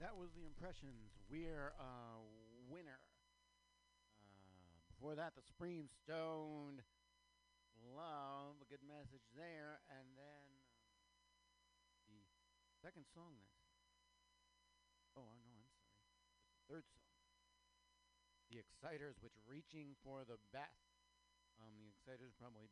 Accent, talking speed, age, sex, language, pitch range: American, 115 wpm, 50-69, male, English, 90-150 Hz